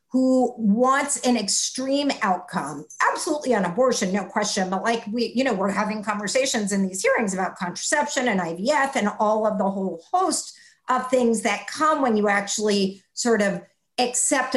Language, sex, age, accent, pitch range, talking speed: English, female, 50-69, American, 205-275 Hz, 170 wpm